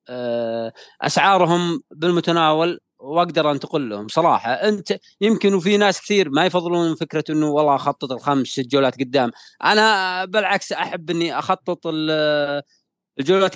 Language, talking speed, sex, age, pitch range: Arabic, 120 wpm, male, 30-49, 145-185 Hz